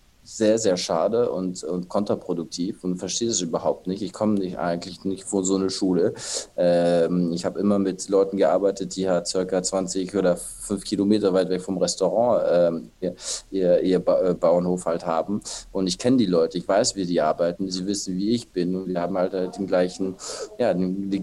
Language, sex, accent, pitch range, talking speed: German, male, German, 90-105 Hz, 200 wpm